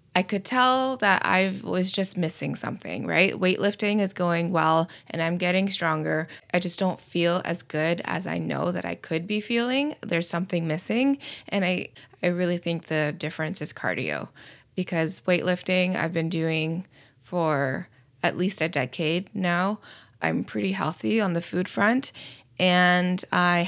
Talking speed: 160 wpm